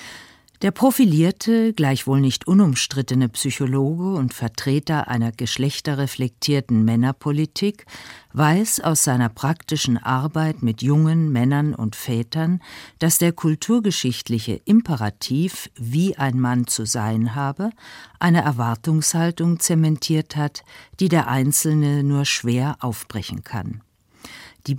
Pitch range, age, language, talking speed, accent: 125-170 Hz, 50-69, German, 105 wpm, German